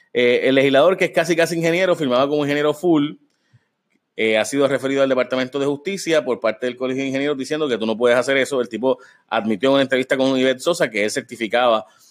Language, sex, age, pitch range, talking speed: Spanish, male, 30-49, 110-135 Hz, 225 wpm